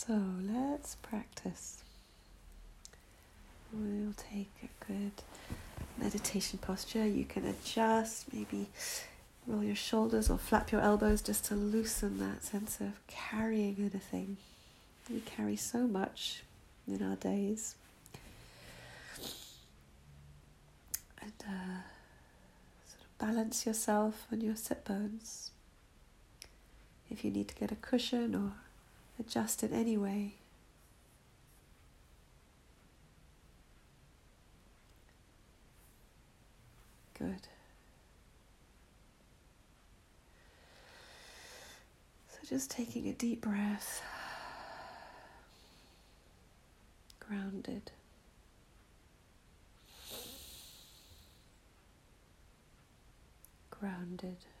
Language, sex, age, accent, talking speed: English, female, 40-59, British, 70 wpm